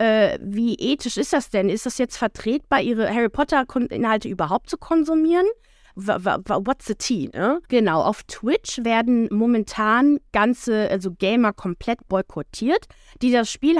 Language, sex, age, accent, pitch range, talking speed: German, female, 20-39, German, 190-255 Hz, 135 wpm